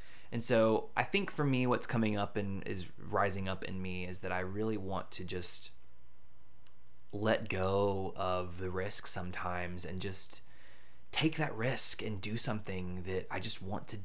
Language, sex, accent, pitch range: English, male, American, 90-110 Hz